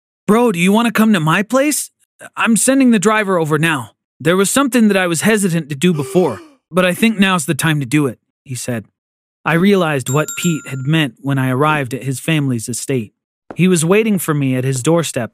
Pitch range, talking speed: 135-190 Hz, 225 wpm